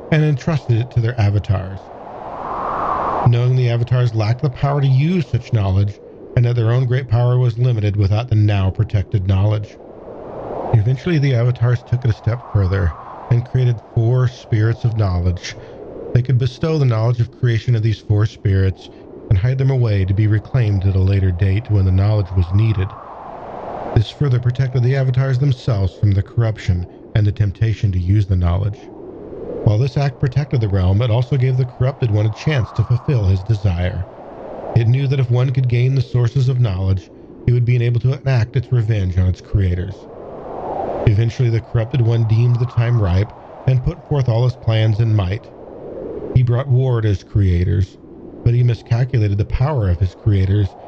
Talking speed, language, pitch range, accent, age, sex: 185 wpm, English, 105-125 Hz, American, 50-69, male